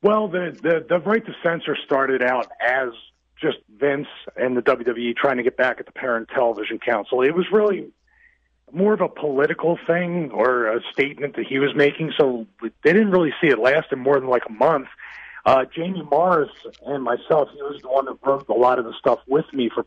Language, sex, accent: English, male, American